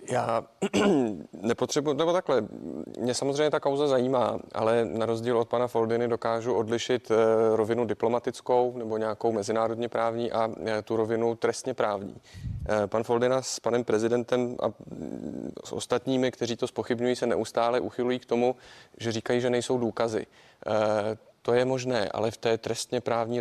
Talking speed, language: 145 wpm, Czech